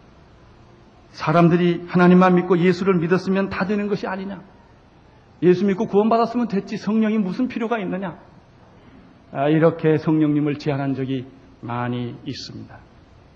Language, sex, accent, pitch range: Korean, male, native, 175-270 Hz